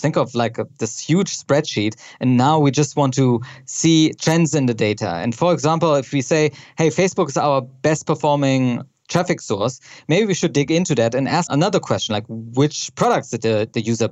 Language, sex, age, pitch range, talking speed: English, male, 20-39, 130-160 Hz, 210 wpm